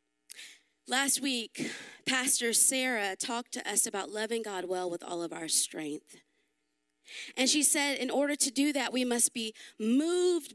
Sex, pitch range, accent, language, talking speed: female, 185-300 Hz, American, English, 160 wpm